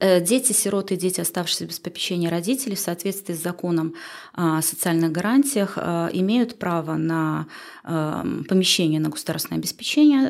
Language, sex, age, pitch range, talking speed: Russian, female, 20-39, 160-200 Hz, 130 wpm